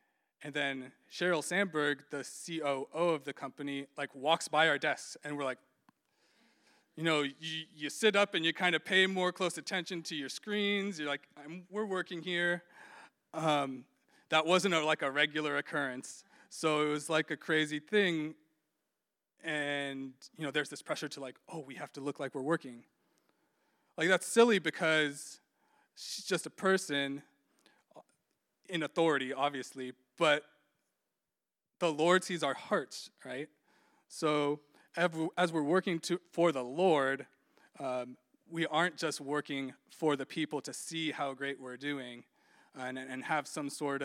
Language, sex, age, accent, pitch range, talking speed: English, male, 20-39, American, 140-170 Hz, 160 wpm